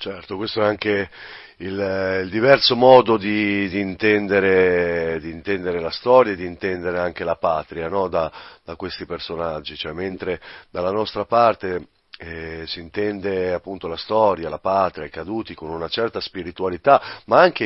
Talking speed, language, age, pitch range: 160 wpm, Italian, 40-59, 95-110 Hz